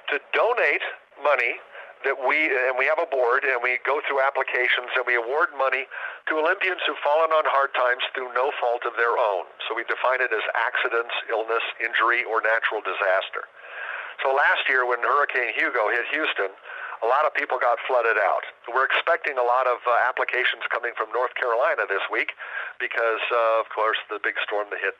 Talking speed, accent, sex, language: 190 wpm, American, male, English